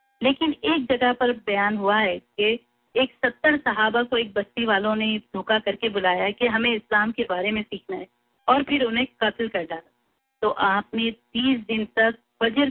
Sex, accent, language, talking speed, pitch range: female, Indian, English, 185 wpm, 200-245 Hz